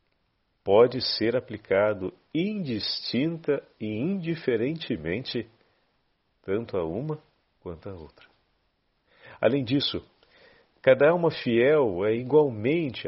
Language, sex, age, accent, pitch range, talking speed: Portuguese, male, 50-69, Brazilian, 105-165 Hz, 85 wpm